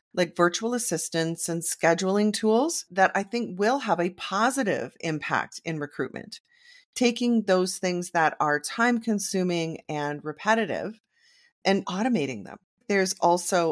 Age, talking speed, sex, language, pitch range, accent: 30-49, 130 wpm, female, English, 160-210 Hz, American